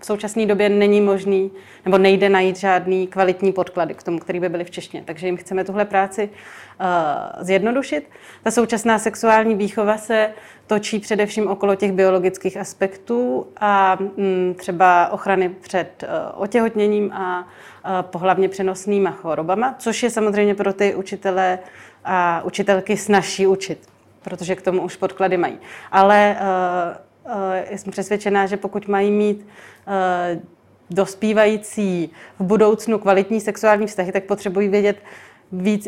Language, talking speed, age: Czech, 140 wpm, 30-49